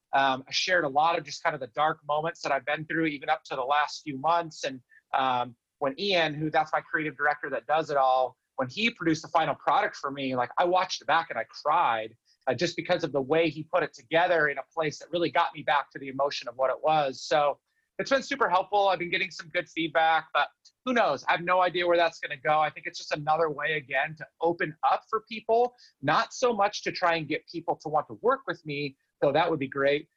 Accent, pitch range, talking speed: American, 150-180 Hz, 260 wpm